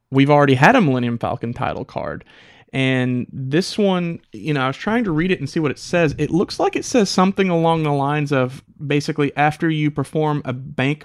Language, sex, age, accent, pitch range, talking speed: English, male, 30-49, American, 125-150 Hz, 215 wpm